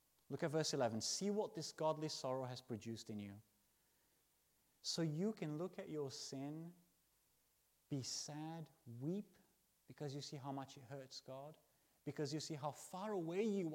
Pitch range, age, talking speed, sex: 125-165 Hz, 30-49, 165 wpm, male